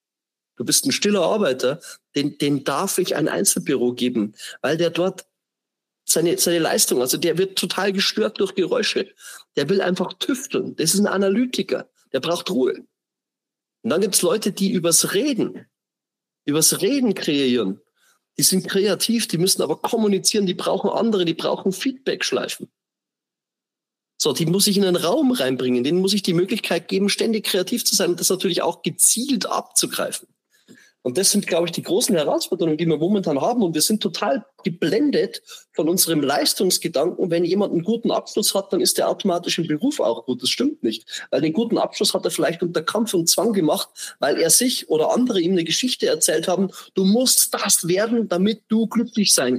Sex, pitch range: male, 170-215 Hz